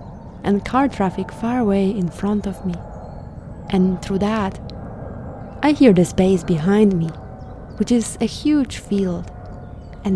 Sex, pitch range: female, 180-220 Hz